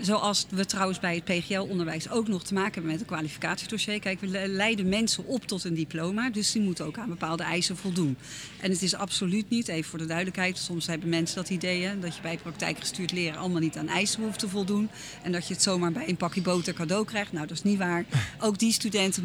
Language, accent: Dutch, Dutch